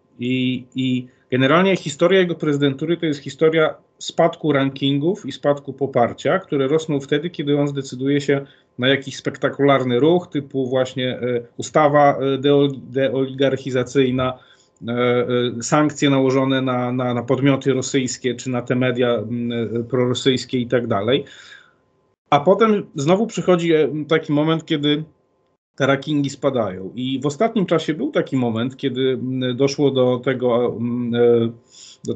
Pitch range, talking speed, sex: 125-150 Hz, 120 wpm, male